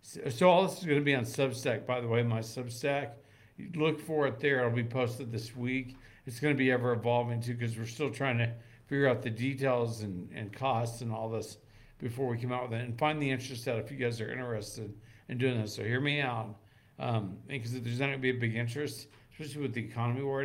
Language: English